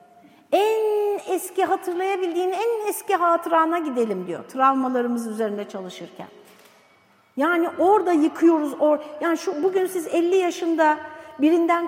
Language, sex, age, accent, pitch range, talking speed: Turkish, female, 60-79, native, 250-355 Hz, 110 wpm